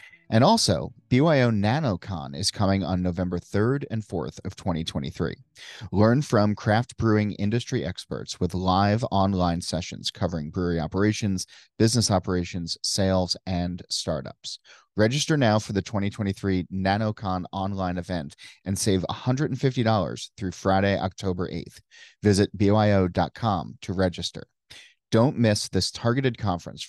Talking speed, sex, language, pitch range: 125 wpm, male, English, 90-110 Hz